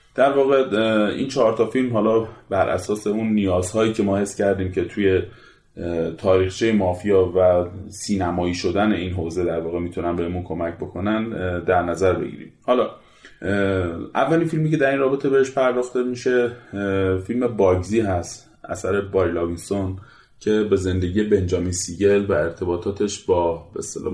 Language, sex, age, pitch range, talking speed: Persian, male, 30-49, 90-105 Hz, 145 wpm